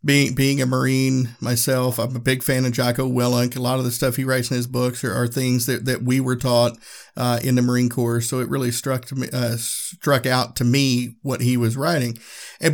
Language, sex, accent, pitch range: English, male, American, 120-140 Hz